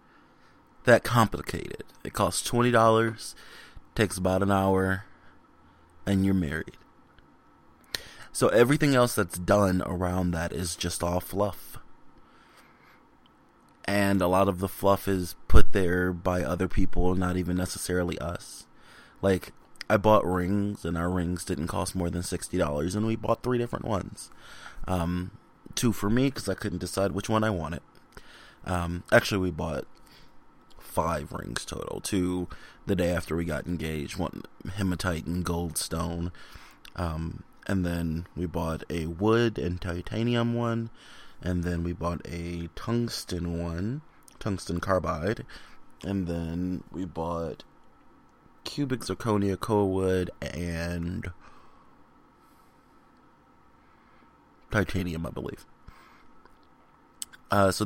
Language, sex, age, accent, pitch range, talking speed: English, male, 20-39, American, 85-100 Hz, 125 wpm